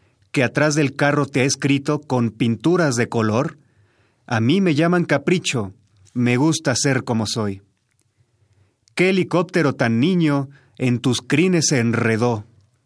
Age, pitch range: 40-59, 115-155 Hz